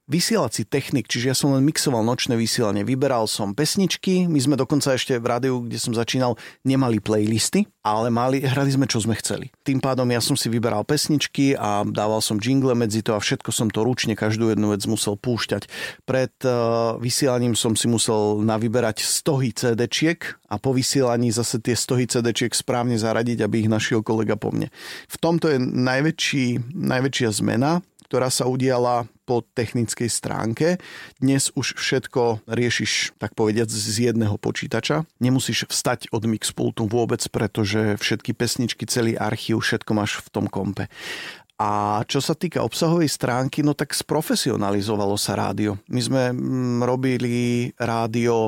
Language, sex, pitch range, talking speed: Slovak, male, 110-130 Hz, 155 wpm